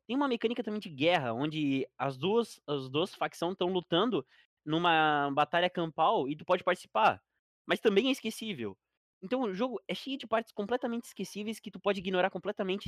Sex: male